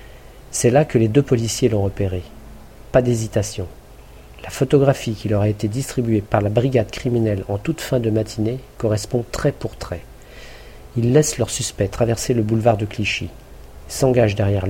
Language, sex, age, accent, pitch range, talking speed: French, male, 50-69, French, 105-125 Hz, 165 wpm